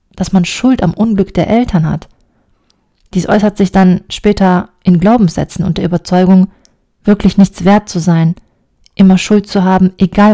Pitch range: 175-205 Hz